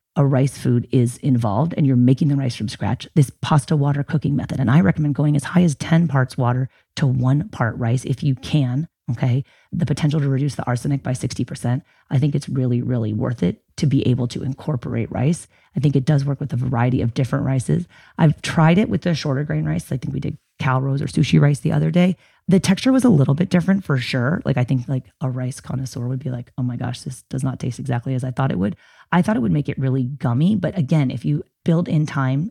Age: 30-49